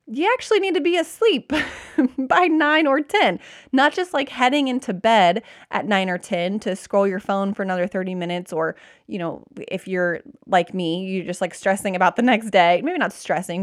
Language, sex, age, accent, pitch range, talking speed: English, female, 20-39, American, 190-270 Hz, 205 wpm